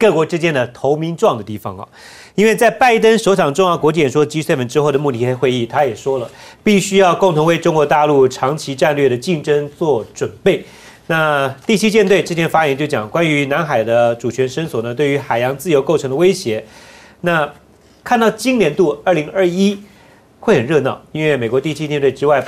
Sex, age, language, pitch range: male, 40-59, Chinese, 130-185 Hz